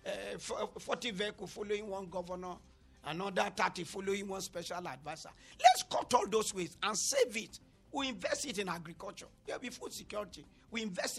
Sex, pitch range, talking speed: male, 180-245 Hz, 165 wpm